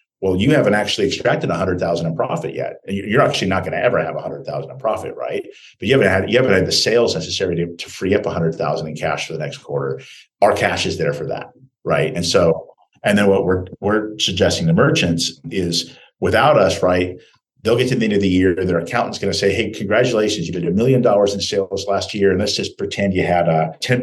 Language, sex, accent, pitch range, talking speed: English, male, American, 85-100 Hz, 250 wpm